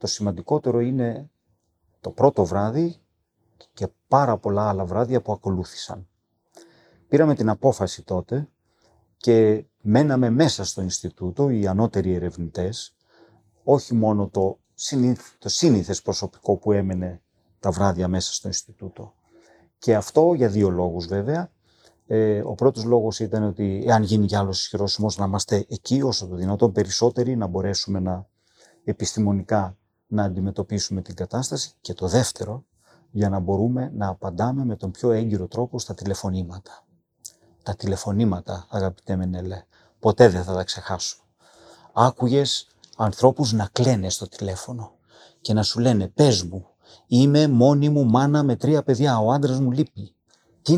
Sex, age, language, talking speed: male, 40-59, Greek, 140 wpm